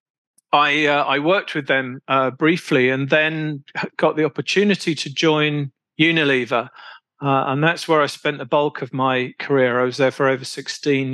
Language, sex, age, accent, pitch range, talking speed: German, male, 40-59, British, 135-150 Hz, 180 wpm